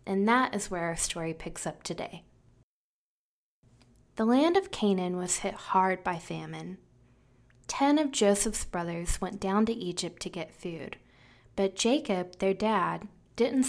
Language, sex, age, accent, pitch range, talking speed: English, female, 20-39, American, 160-220 Hz, 150 wpm